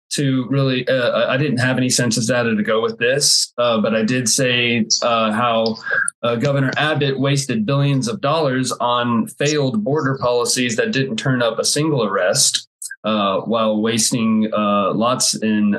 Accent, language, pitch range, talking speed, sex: American, English, 115-145 Hz, 165 wpm, male